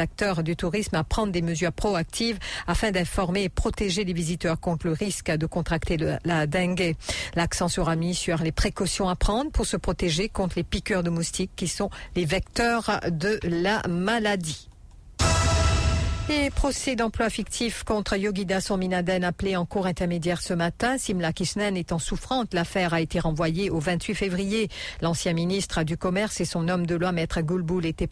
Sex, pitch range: female, 165-190 Hz